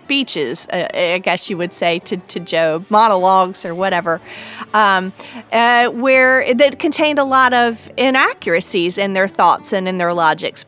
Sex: female